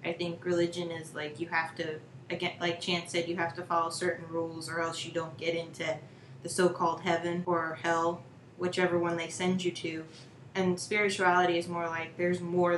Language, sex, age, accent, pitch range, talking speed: English, female, 20-39, American, 165-185 Hz, 195 wpm